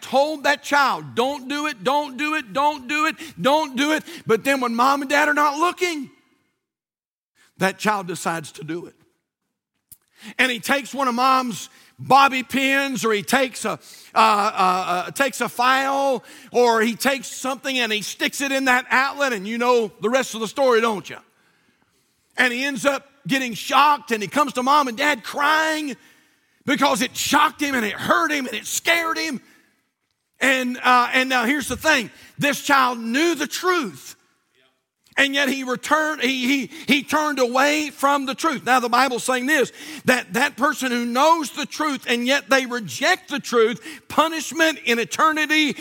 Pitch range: 225-285 Hz